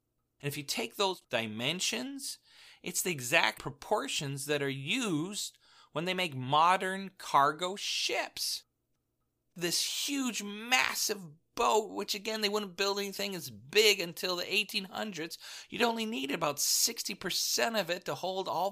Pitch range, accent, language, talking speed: 145-215 Hz, American, English, 140 wpm